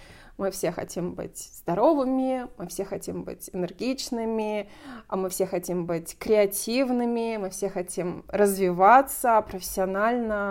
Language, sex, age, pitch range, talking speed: Russian, female, 20-39, 185-235 Hz, 120 wpm